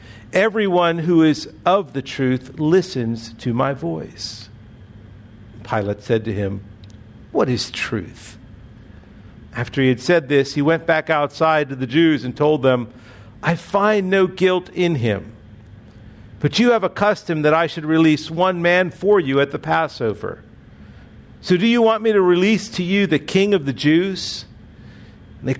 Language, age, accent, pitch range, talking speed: English, 50-69, American, 110-165 Hz, 160 wpm